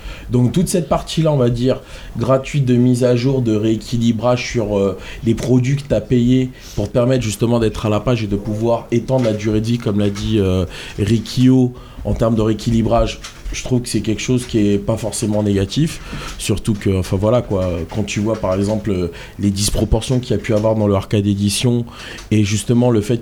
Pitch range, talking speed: 105-125 Hz, 215 wpm